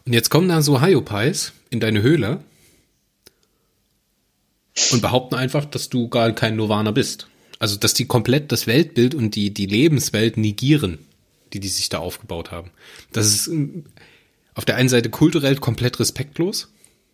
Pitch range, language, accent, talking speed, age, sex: 110-145 Hz, German, German, 155 wpm, 30-49, male